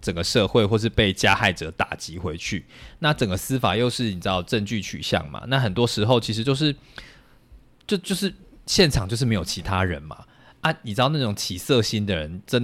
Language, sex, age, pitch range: Chinese, male, 20-39, 95-125 Hz